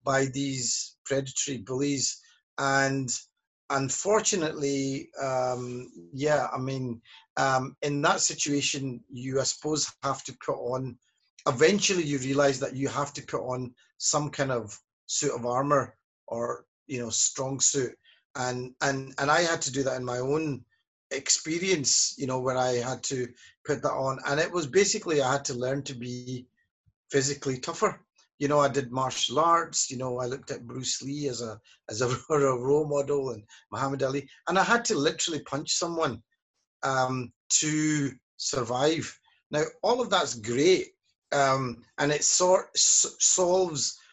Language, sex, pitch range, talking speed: English, male, 130-155 Hz, 160 wpm